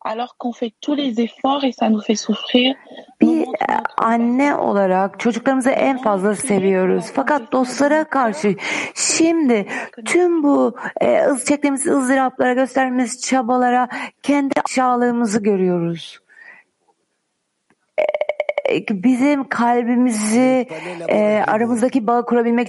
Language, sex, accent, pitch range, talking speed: Turkish, female, native, 205-265 Hz, 75 wpm